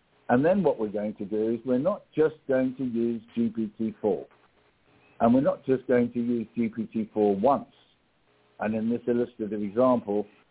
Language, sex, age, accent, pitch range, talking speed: English, male, 60-79, British, 100-125 Hz, 165 wpm